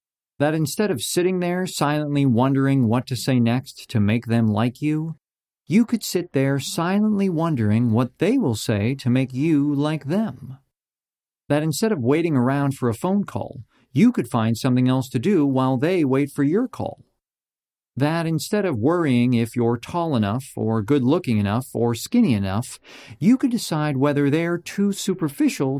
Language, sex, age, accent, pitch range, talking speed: English, male, 50-69, American, 130-175 Hz, 170 wpm